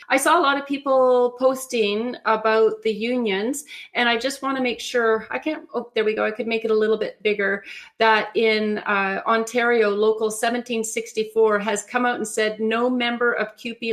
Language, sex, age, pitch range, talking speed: English, female, 40-59, 220-250 Hz, 200 wpm